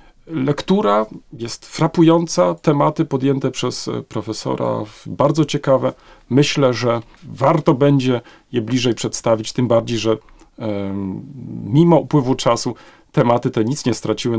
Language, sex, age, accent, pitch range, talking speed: Polish, male, 40-59, native, 105-130 Hz, 115 wpm